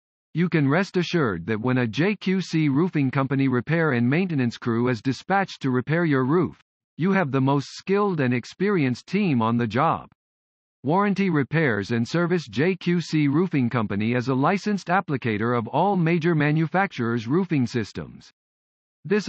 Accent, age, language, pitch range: American, 50-69, English, 120-175 Hz